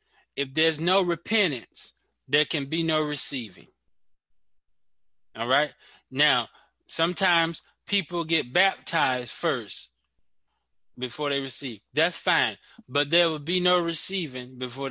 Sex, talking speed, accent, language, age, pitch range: male, 115 wpm, American, English, 20-39, 120-155 Hz